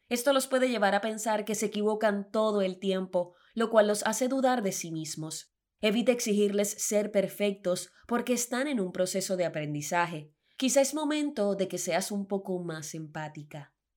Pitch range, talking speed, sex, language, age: 175-235 Hz, 175 wpm, female, Spanish, 20-39